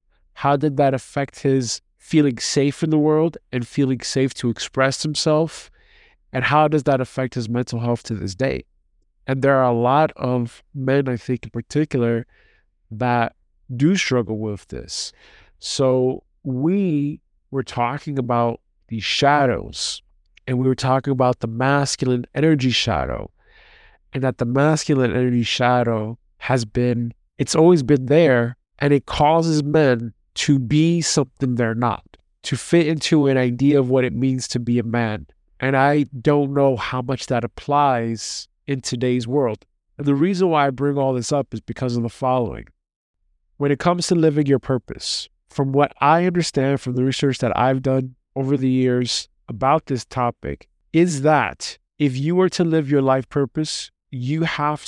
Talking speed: 165 wpm